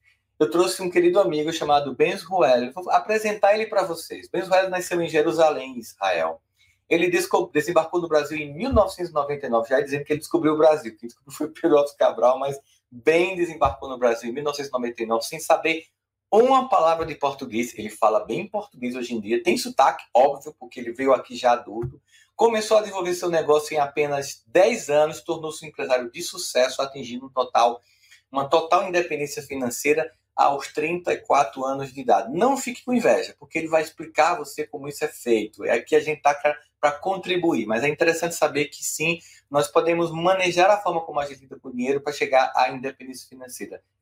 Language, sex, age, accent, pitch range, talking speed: Portuguese, male, 20-39, Brazilian, 130-170 Hz, 185 wpm